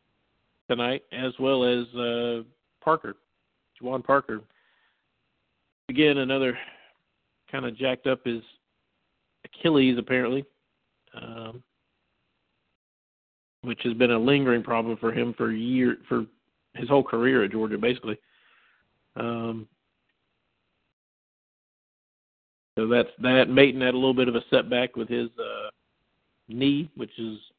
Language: English